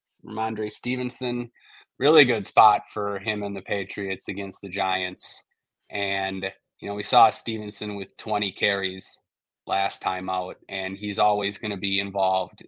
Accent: American